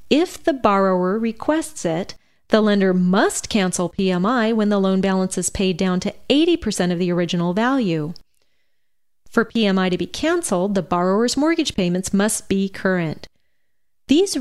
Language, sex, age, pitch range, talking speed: English, female, 30-49, 185-250 Hz, 150 wpm